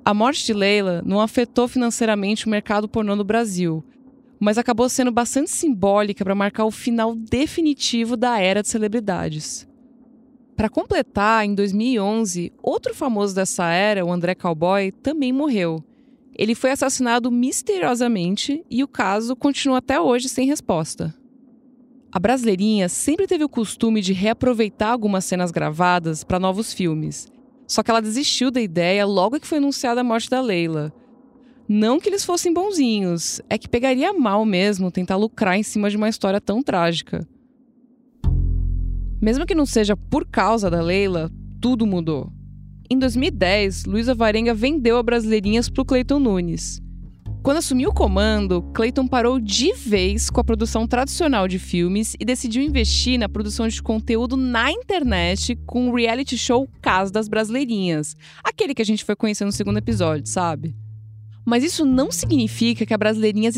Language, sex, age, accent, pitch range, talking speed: Portuguese, female, 20-39, Brazilian, 195-255 Hz, 155 wpm